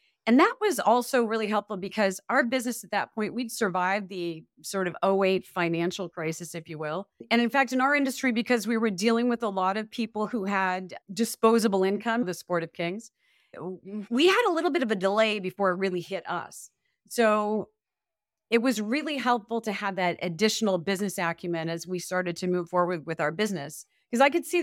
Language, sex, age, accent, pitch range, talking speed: English, female, 40-59, American, 185-235 Hz, 200 wpm